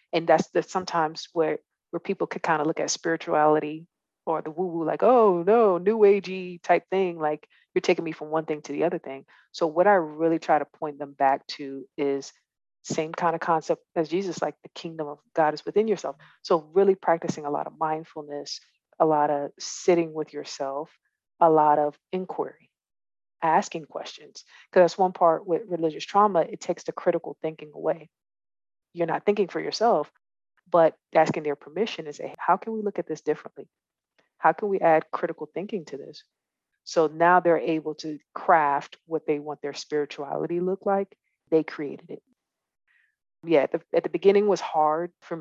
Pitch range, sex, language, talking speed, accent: 155-180 Hz, female, English, 185 wpm, American